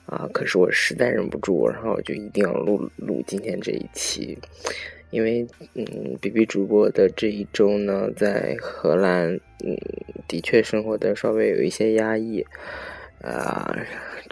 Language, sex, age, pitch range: Chinese, male, 20-39, 105-125 Hz